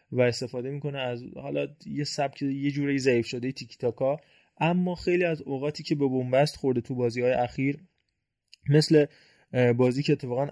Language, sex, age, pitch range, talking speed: Persian, male, 20-39, 125-150 Hz, 165 wpm